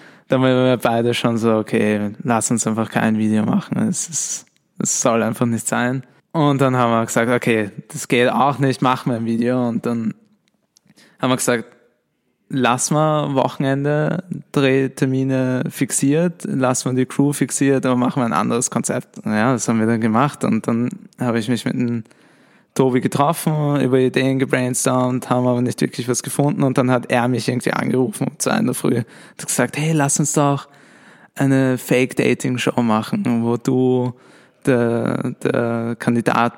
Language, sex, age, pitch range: German, male, 20-39, 115-135 Hz